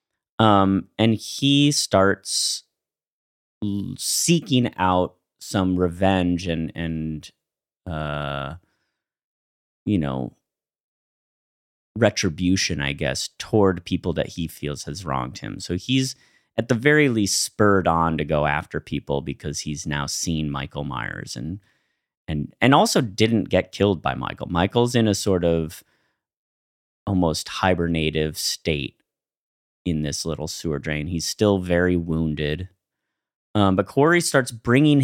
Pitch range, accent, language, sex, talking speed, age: 75-100 Hz, American, English, male, 125 wpm, 30-49